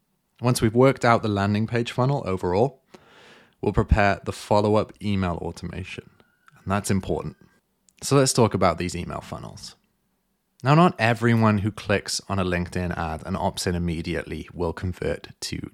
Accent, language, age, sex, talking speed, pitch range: British, English, 30-49, male, 155 wpm, 90-115 Hz